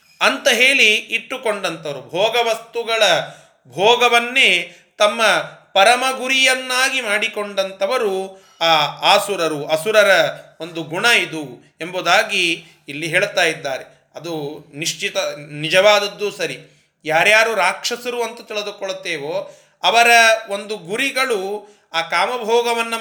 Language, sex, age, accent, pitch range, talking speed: Kannada, male, 30-49, native, 175-235 Hz, 80 wpm